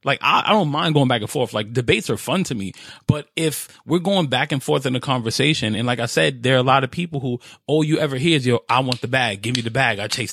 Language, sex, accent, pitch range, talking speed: English, male, American, 125-175 Hz, 310 wpm